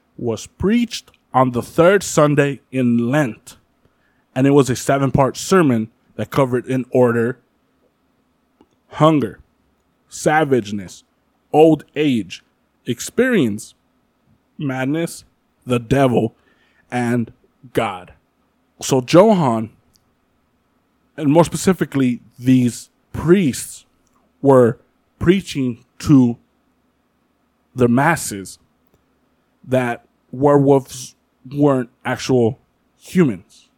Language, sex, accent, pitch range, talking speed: English, male, American, 120-150 Hz, 80 wpm